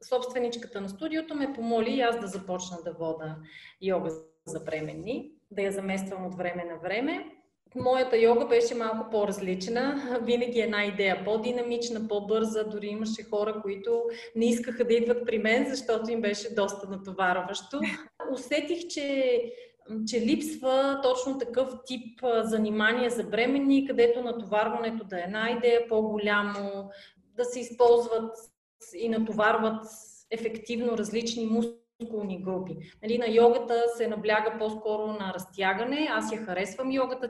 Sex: female